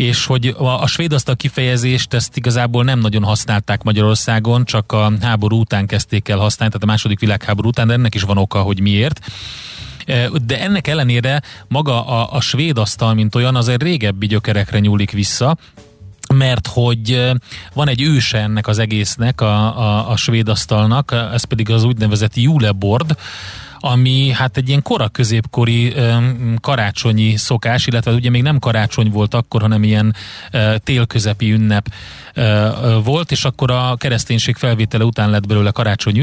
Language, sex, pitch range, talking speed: Hungarian, male, 110-125 Hz, 155 wpm